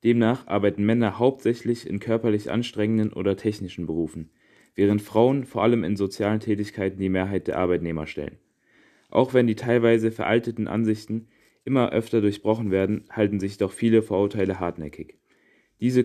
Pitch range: 100-115 Hz